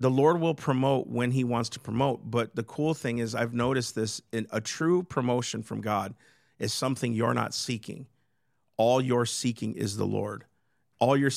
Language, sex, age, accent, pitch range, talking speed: English, male, 40-59, American, 110-135 Hz, 185 wpm